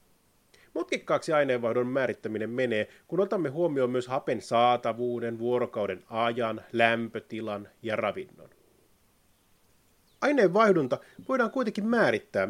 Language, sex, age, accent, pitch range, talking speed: Finnish, male, 30-49, native, 115-190 Hz, 90 wpm